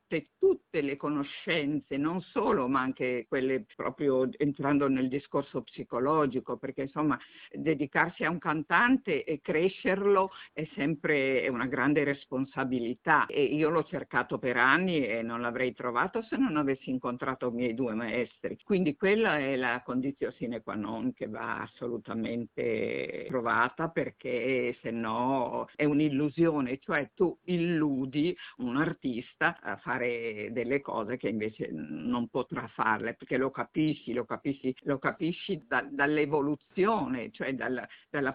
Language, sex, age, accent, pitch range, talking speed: Italian, female, 50-69, native, 130-160 Hz, 135 wpm